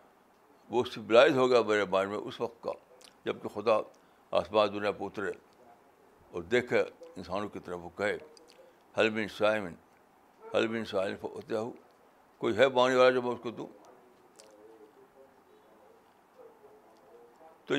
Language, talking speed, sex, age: Urdu, 140 wpm, male, 60-79